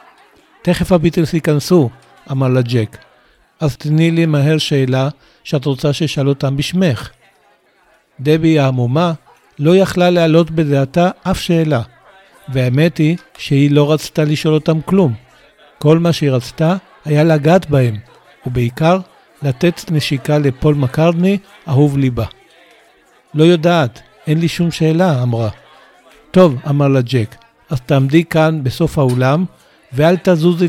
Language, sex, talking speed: Hebrew, male, 125 wpm